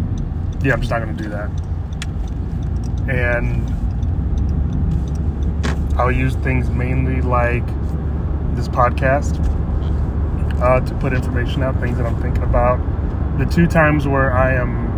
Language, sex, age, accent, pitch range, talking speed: English, male, 30-49, American, 85-110 Hz, 130 wpm